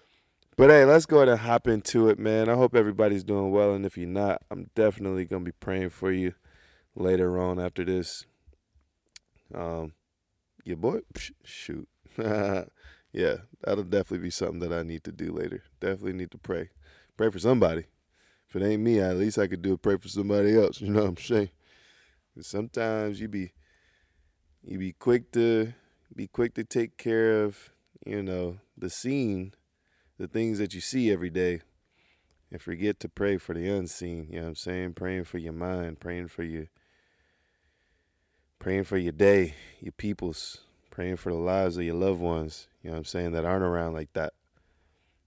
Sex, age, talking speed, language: male, 20-39, 185 wpm, English